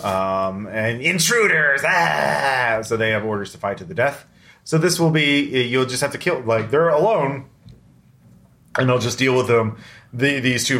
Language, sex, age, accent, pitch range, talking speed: English, male, 30-49, American, 100-130 Hz, 190 wpm